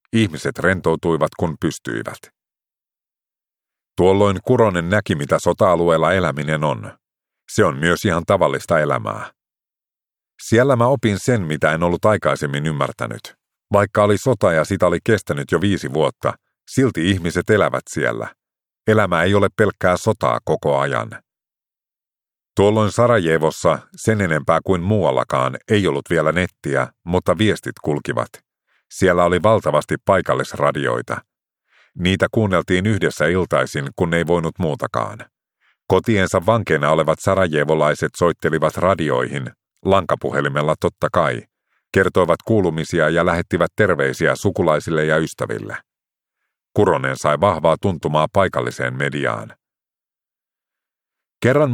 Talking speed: 110 wpm